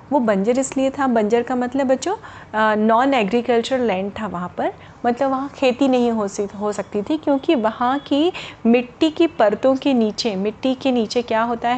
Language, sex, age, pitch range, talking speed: Hindi, female, 30-49, 215-270 Hz, 185 wpm